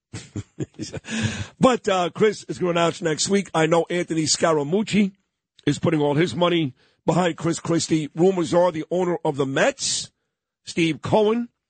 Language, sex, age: English, male, 50-69